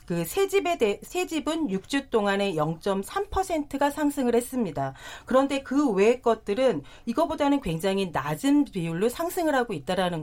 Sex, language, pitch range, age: female, Korean, 185-265 Hz, 40-59